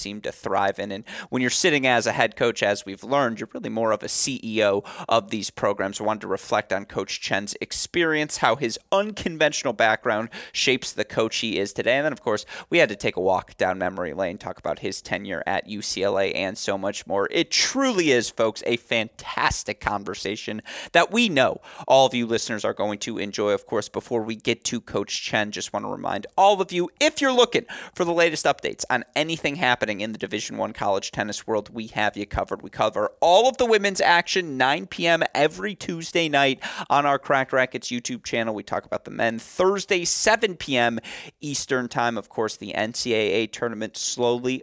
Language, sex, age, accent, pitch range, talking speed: English, male, 30-49, American, 110-165 Hz, 205 wpm